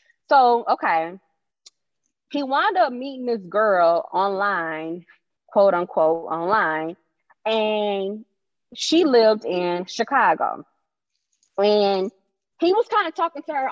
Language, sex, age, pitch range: English, female, 20-39, 195-275 Hz